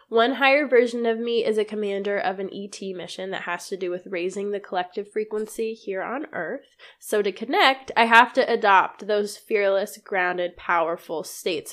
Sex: female